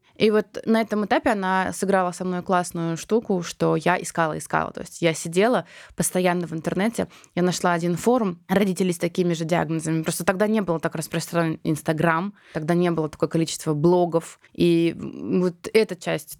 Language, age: Russian, 20-39